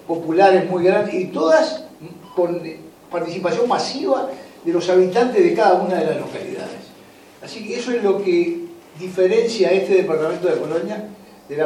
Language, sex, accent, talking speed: Spanish, male, Argentinian, 160 wpm